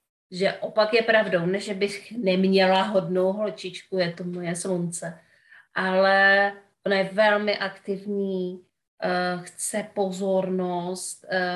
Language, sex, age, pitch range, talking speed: Czech, female, 30-49, 180-200 Hz, 105 wpm